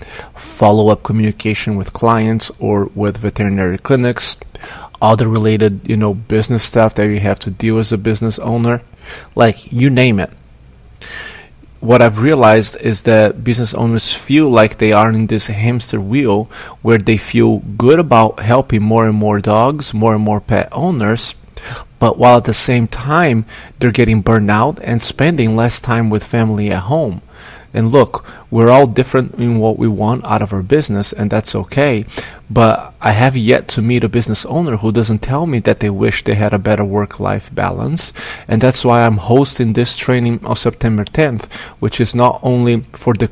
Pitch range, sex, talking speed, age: 105-125 Hz, male, 180 wpm, 30-49